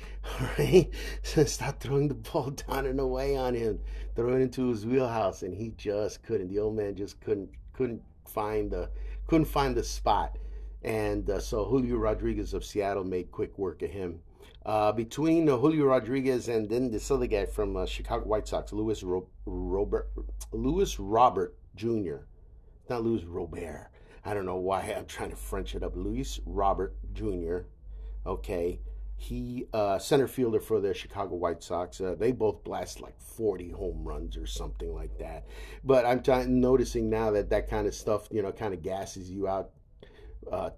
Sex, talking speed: male, 175 wpm